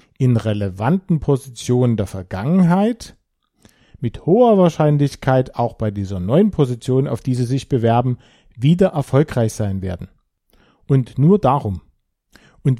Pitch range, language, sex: 115-165 Hz, German, male